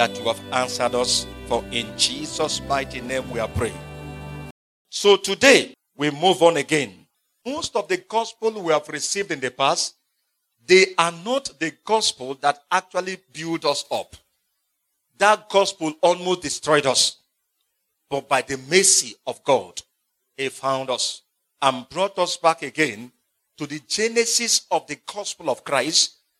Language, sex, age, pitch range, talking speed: English, male, 50-69, 130-185 Hz, 150 wpm